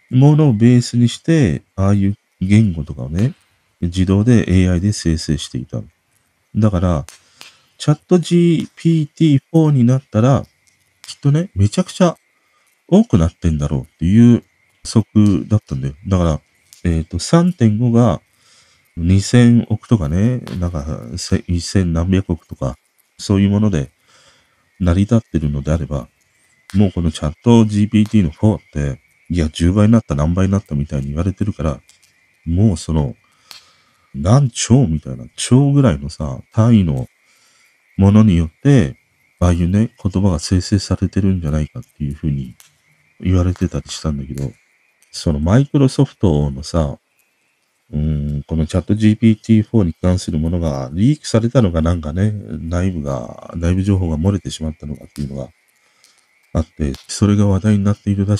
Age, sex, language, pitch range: 40-59, male, Japanese, 80-110 Hz